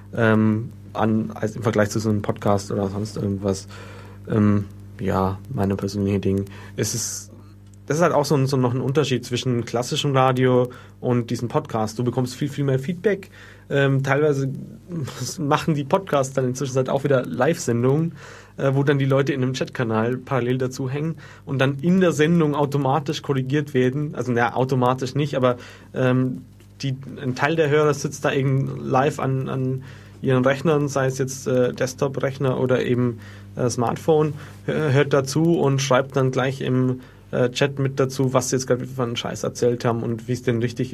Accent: German